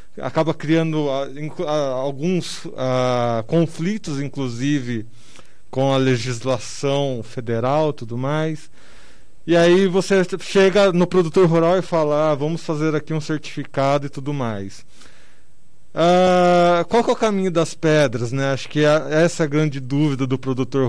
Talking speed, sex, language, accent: 150 wpm, male, Portuguese, Brazilian